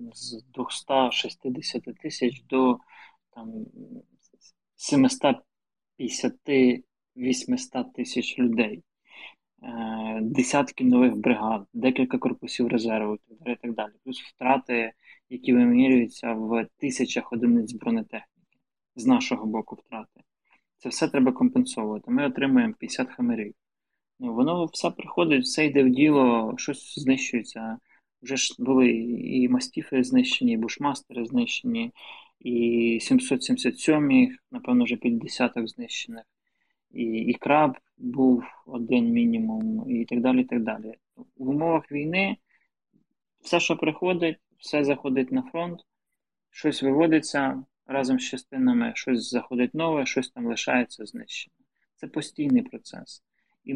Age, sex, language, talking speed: 20-39, male, Ukrainian, 115 wpm